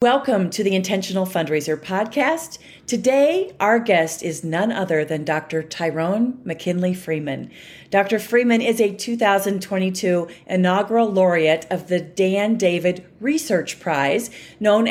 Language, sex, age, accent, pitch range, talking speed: English, female, 40-59, American, 175-220 Hz, 125 wpm